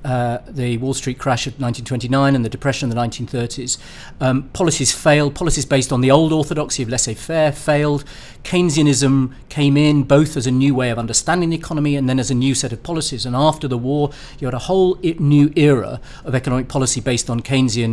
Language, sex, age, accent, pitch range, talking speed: English, male, 40-59, British, 120-145 Hz, 210 wpm